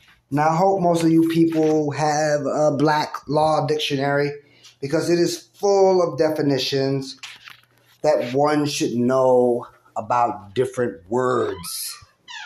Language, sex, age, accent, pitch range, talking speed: English, male, 30-49, American, 125-165 Hz, 120 wpm